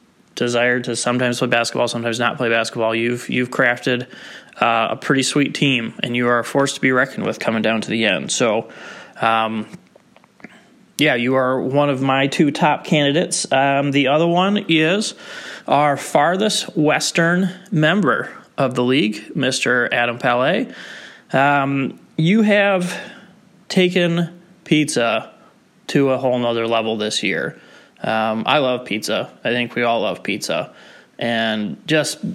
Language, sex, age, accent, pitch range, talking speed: English, male, 20-39, American, 125-170 Hz, 150 wpm